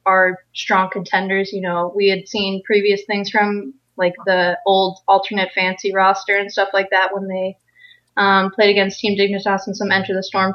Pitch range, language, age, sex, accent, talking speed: 185-210 Hz, English, 20-39, female, American, 190 wpm